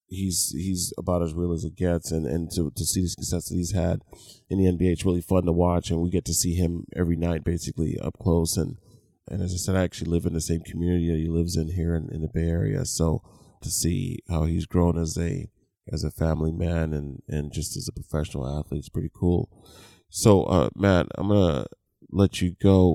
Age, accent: 20-39, American